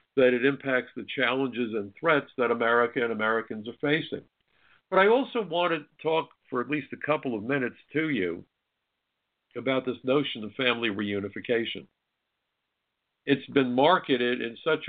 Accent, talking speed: American, 155 wpm